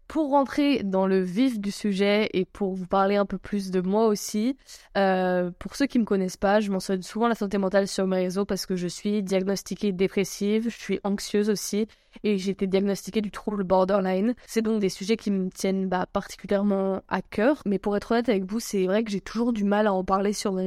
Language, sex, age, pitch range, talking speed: French, female, 20-39, 195-215 Hz, 230 wpm